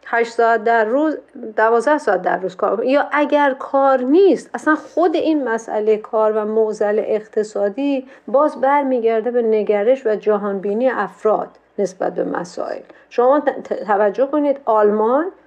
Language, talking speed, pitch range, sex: Persian, 140 wpm, 210-275 Hz, female